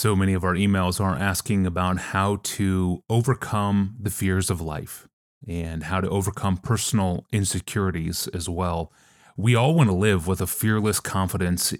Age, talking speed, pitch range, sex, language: 30-49, 165 wpm, 90-110 Hz, male, English